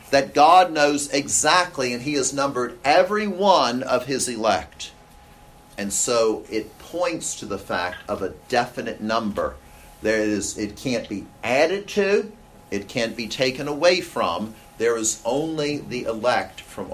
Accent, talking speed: American, 150 wpm